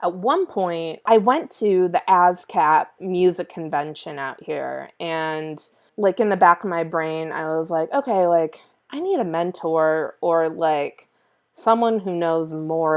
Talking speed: 160 wpm